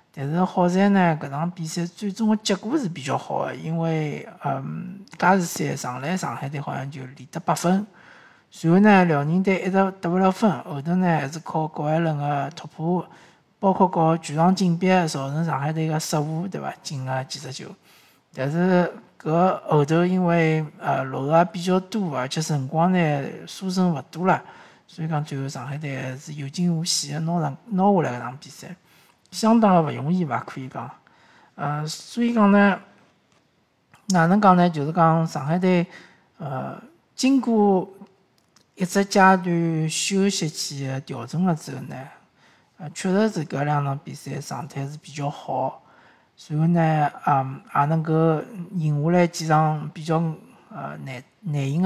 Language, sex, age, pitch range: Chinese, male, 50-69, 145-185 Hz